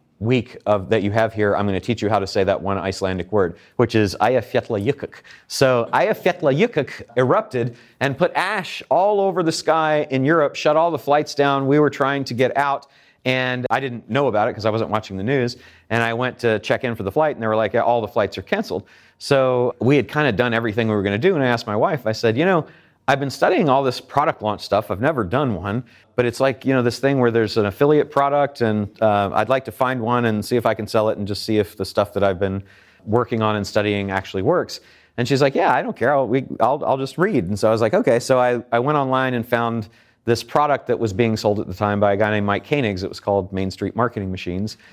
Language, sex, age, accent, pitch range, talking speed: English, male, 40-59, American, 105-135 Hz, 260 wpm